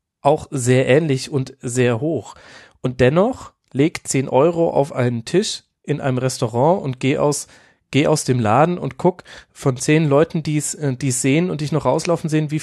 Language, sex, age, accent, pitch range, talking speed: German, male, 30-49, German, 130-155 Hz, 180 wpm